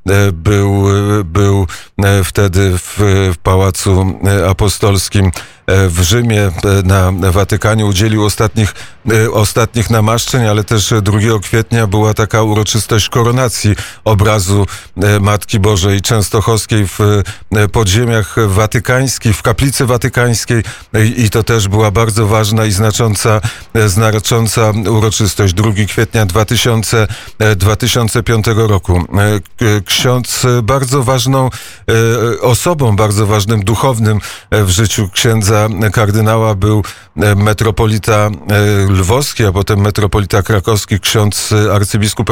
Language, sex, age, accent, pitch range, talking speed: Polish, male, 40-59, native, 100-115 Hz, 100 wpm